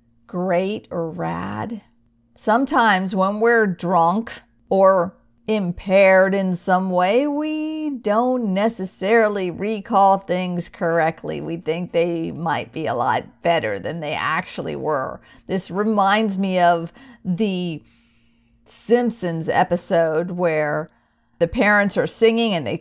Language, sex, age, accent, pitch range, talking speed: English, female, 50-69, American, 165-210 Hz, 115 wpm